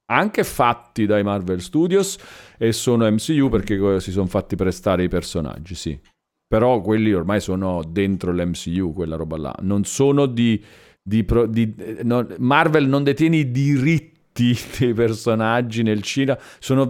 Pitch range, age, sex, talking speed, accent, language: 95-135 Hz, 40-59, male, 150 wpm, native, Italian